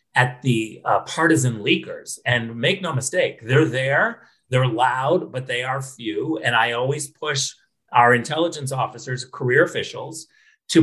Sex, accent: male, American